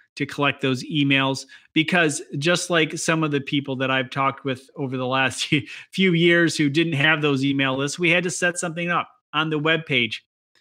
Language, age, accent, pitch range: English, 30-49, American, 135-180 Hz